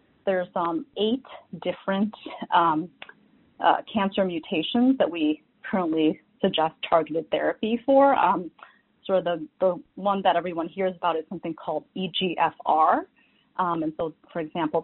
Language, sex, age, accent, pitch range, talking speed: English, female, 30-49, American, 180-245 Hz, 140 wpm